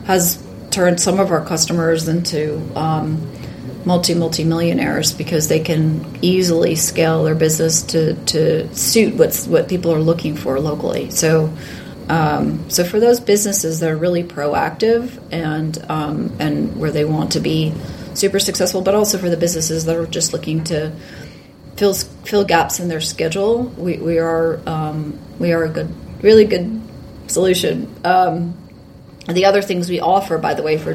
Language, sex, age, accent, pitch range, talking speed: English, female, 30-49, American, 155-180 Hz, 165 wpm